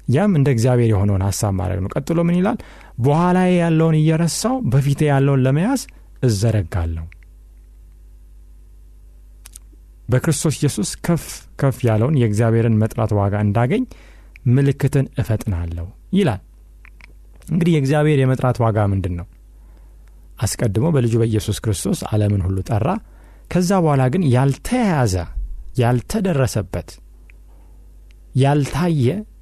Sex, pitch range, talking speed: male, 95-145 Hz, 90 wpm